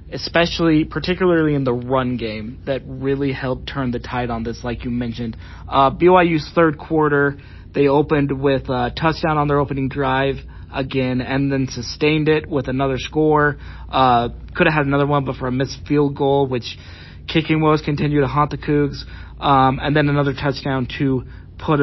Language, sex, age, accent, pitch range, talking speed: English, male, 30-49, American, 125-150 Hz, 180 wpm